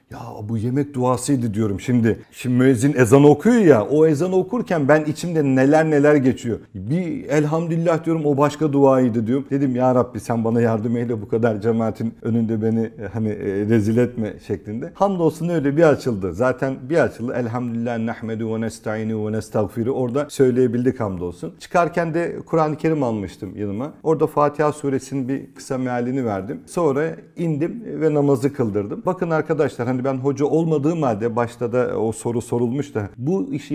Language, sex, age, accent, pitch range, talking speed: Turkish, male, 50-69, native, 110-145 Hz, 165 wpm